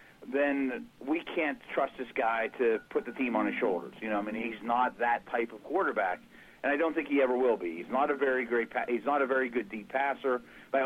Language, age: English, 40-59